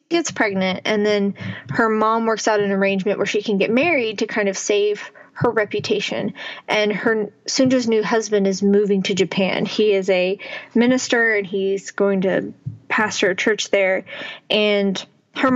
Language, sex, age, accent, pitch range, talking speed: English, female, 20-39, American, 200-245 Hz, 170 wpm